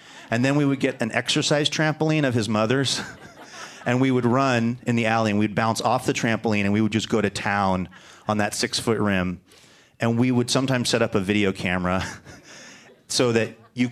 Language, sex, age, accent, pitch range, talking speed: English, male, 30-49, American, 105-125 Hz, 205 wpm